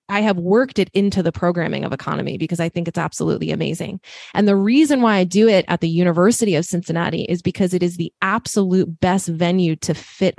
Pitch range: 170-200 Hz